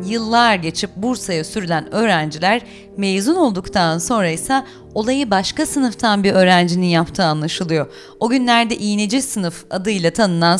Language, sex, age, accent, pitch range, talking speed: Turkish, female, 30-49, native, 175-225 Hz, 125 wpm